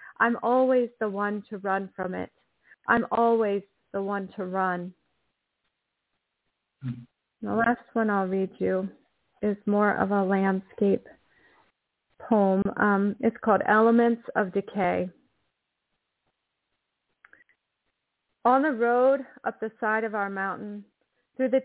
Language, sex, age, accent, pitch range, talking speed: English, female, 30-49, American, 205-245 Hz, 120 wpm